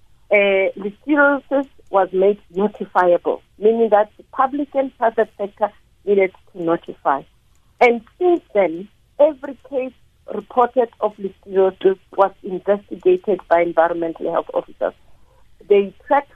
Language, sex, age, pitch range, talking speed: English, female, 50-69, 185-260 Hz, 115 wpm